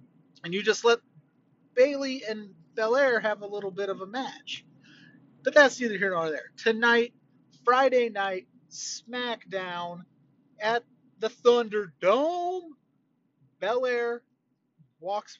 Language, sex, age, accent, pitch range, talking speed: English, male, 30-49, American, 185-230 Hz, 120 wpm